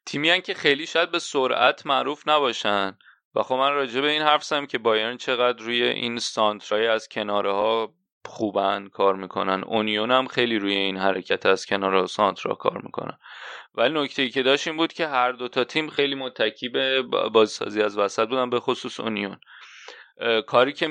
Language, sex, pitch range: Persian, male, 110-135 Hz